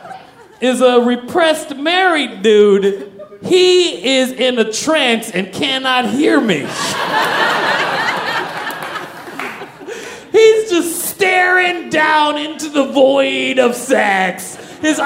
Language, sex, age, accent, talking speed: English, male, 30-49, American, 95 wpm